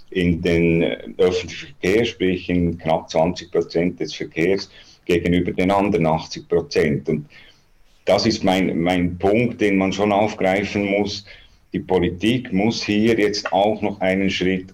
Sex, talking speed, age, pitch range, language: male, 145 wpm, 50-69, 95-115 Hz, German